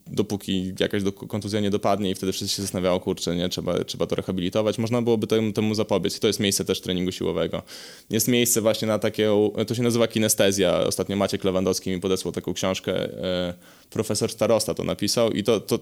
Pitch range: 100-120 Hz